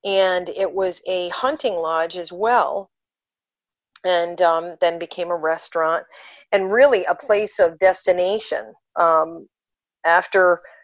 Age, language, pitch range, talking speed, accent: 40-59, English, 170-210 Hz, 120 wpm, American